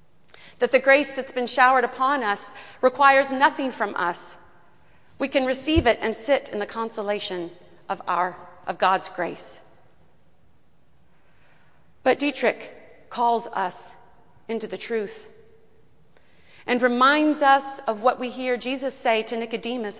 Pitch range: 190-255 Hz